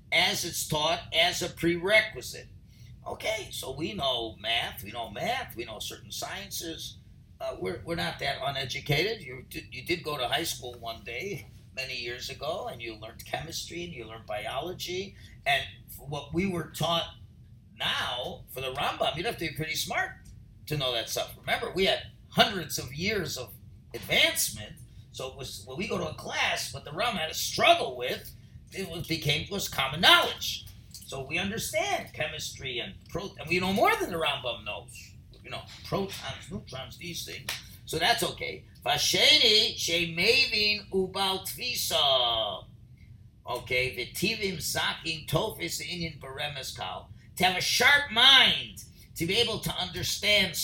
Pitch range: 120-180 Hz